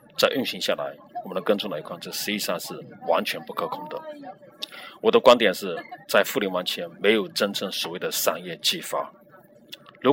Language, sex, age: Chinese, male, 30-49